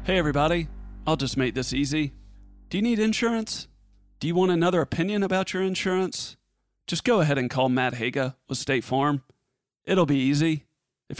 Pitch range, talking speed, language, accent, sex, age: 120-150 Hz, 175 wpm, English, American, male, 40-59